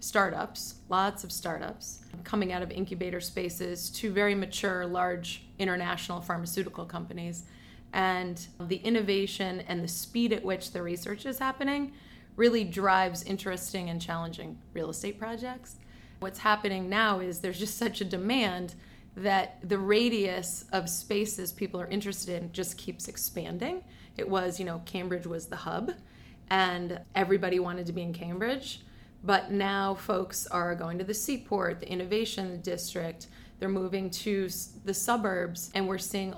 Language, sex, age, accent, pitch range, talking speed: English, female, 30-49, American, 180-200 Hz, 150 wpm